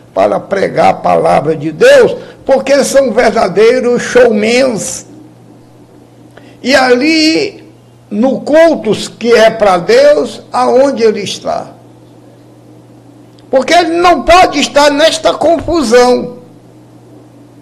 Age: 60-79